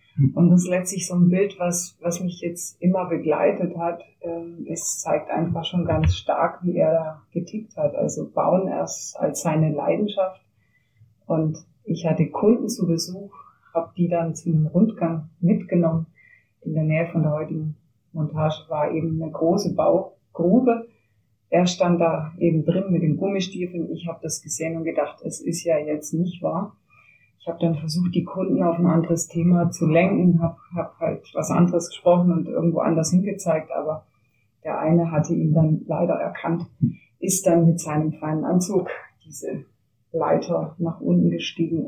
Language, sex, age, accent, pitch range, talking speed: German, female, 30-49, German, 155-175 Hz, 165 wpm